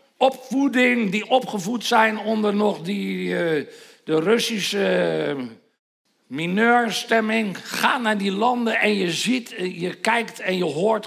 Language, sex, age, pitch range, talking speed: Dutch, male, 50-69, 165-230 Hz, 115 wpm